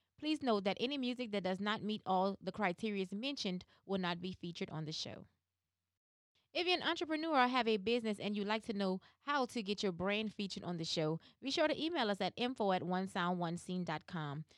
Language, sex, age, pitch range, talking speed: English, female, 20-39, 180-245 Hz, 210 wpm